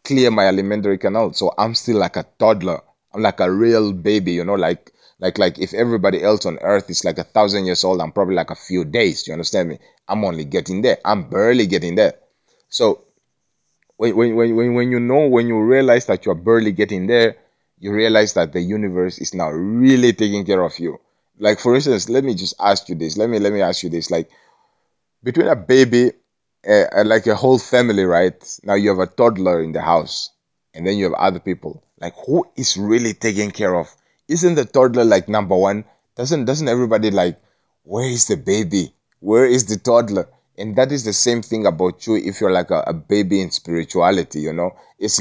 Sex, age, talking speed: male, 30-49, 210 wpm